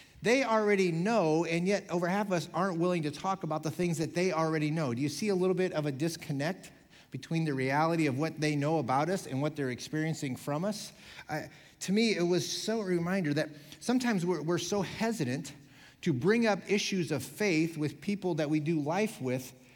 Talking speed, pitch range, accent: 215 wpm, 150-205 Hz, American